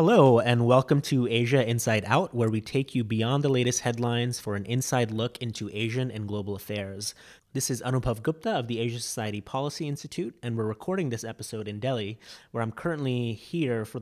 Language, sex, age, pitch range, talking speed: English, male, 30-49, 110-135 Hz, 195 wpm